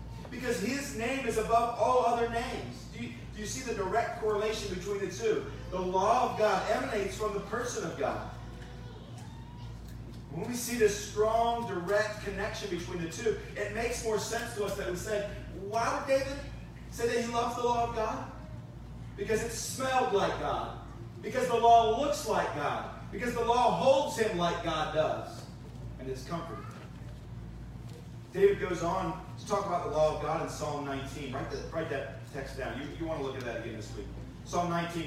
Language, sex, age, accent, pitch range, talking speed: English, male, 40-59, American, 145-230 Hz, 190 wpm